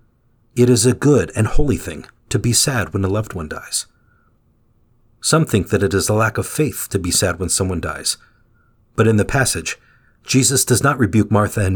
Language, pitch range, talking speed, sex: English, 105-125 Hz, 205 wpm, male